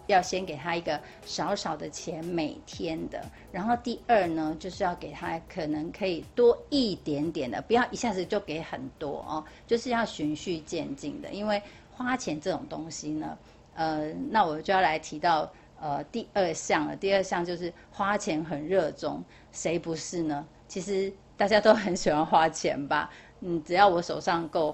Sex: female